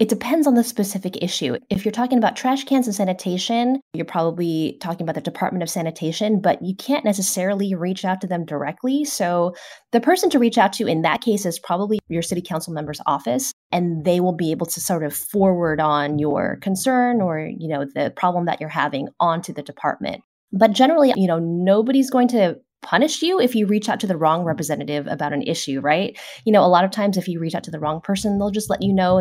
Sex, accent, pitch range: female, American, 165-220 Hz